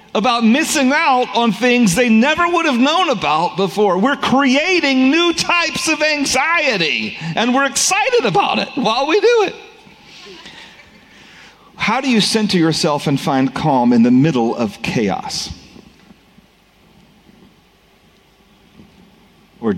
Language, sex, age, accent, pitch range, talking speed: English, male, 40-59, American, 140-215 Hz, 125 wpm